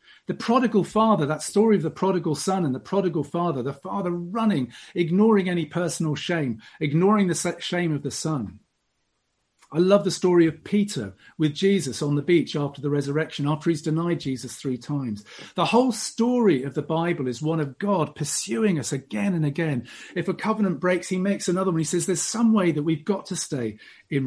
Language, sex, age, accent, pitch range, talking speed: English, male, 40-59, British, 145-195 Hz, 200 wpm